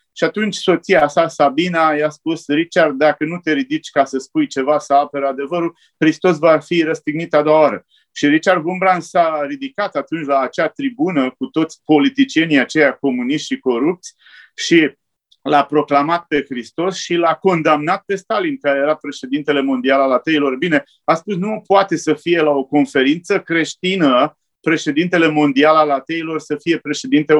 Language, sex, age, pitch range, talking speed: Romanian, male, 30-49, 145-185 Hz, 165 wpm